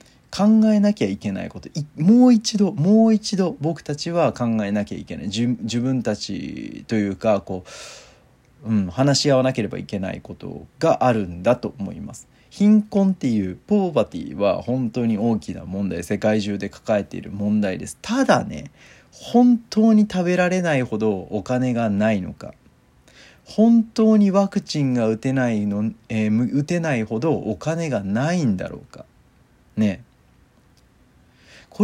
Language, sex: Japanese, male